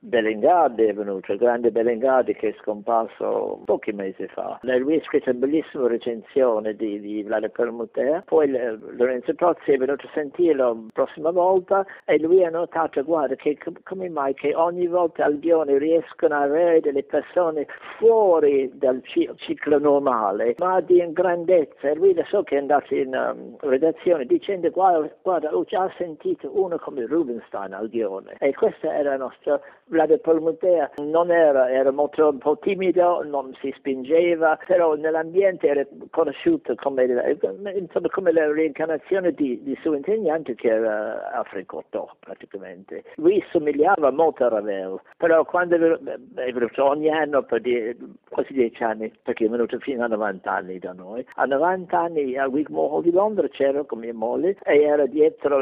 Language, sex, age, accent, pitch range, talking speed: Italian, male, 60-79, native, 130-175 Hz, 165 wpm